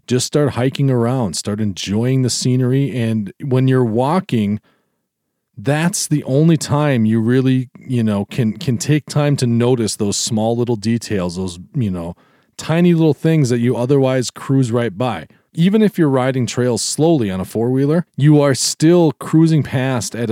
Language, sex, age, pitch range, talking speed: English, male, 40-59, 110-145 Hz, 170 wpm